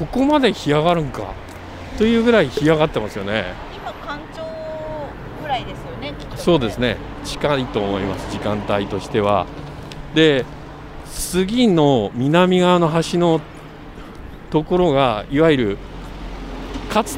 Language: Japanese